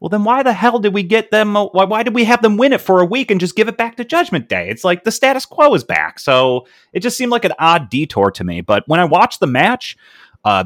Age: 30-49